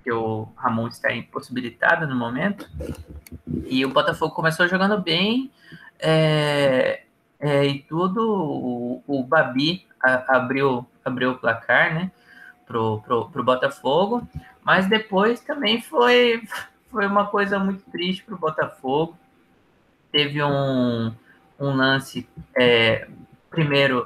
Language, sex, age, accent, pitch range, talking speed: Portuguese, male, 20-39, Brazilian, 125-180 Hz, 120 wpm